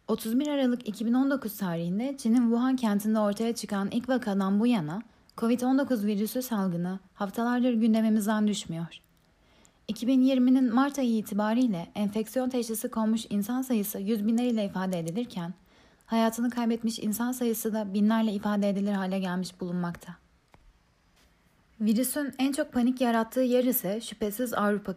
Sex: female